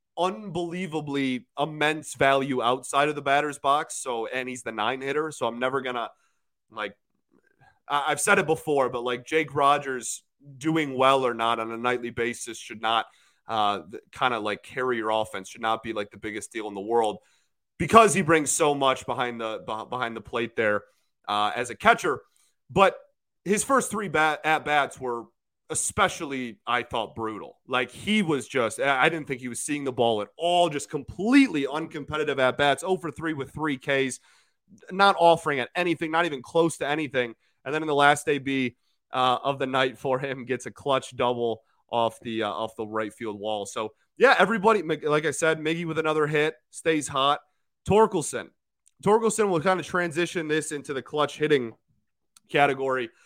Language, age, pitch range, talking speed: English, 30-49, 125-160 Hz, 185 wpm